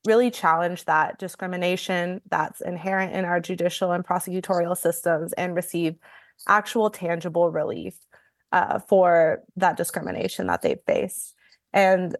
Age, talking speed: 20-39, 125 wpm